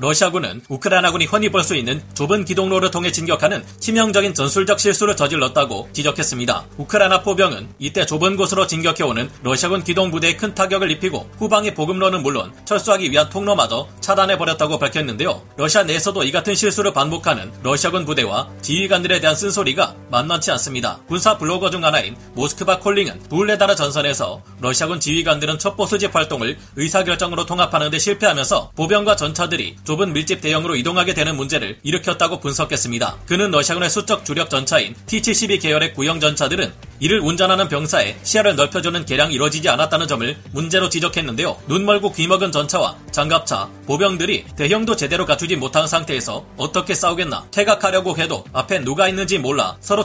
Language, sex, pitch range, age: Korean, male, 145-195 Hz, 30-49